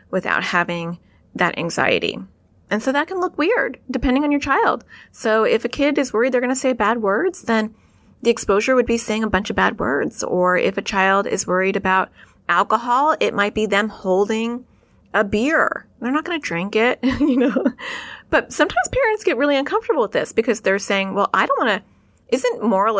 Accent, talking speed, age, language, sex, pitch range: American, 205 wpm, 30-49, English, female, 180-250 Hz